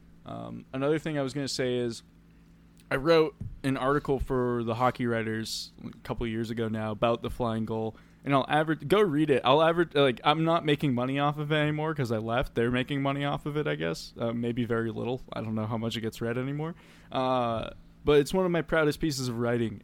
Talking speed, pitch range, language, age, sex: 235 wpm, 110-135 Hz, English, 20-39, male